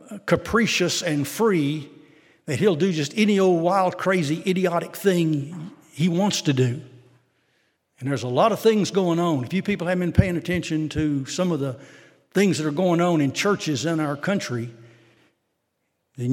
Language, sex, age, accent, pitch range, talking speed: English, male, 60-79, American, 150-195 Hz, 175 wpm